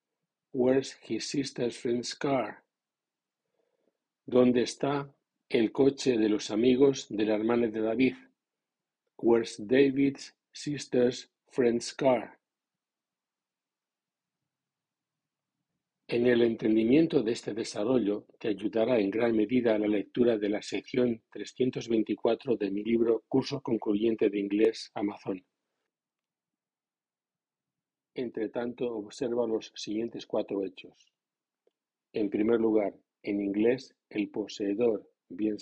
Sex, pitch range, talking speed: male, 110-125 Hz, 105 wpm